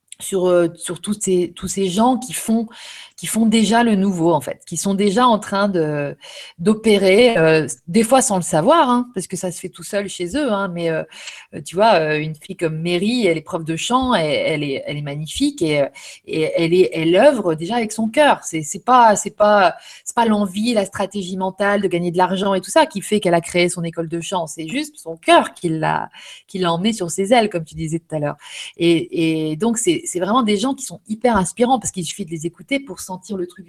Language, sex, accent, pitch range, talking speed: French, female, French, 165-215 Hz, 240 wpm